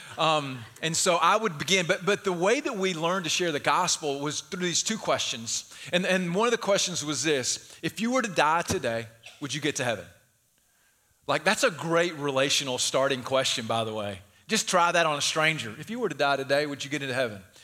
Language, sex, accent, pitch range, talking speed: English, male, American, 140-205 Hz, 230 wpm